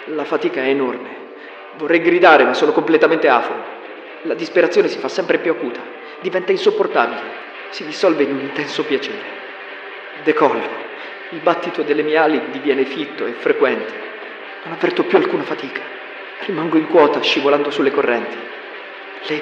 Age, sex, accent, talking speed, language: 40-59, male, native, 145 wpm, Italian